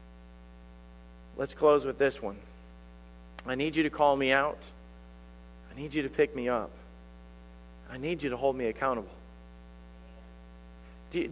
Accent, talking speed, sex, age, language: American, 145 wpm, male, 40-59, English